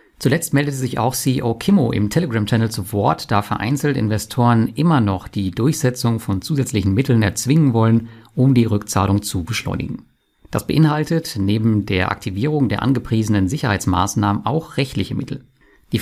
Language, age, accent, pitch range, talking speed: German, 50-69, German, 100-130 Hz, 145 wpm